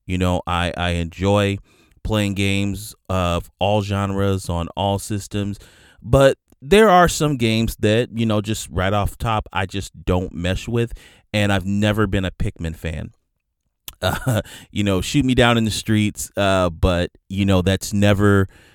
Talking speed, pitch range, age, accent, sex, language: 165 wpm, 85-105 Hz, 30-49, American, male, English